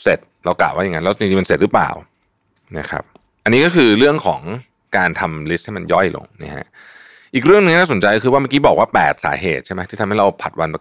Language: Thai